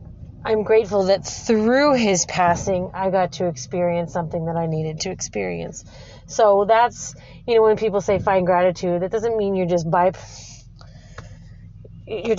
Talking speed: 155 wpm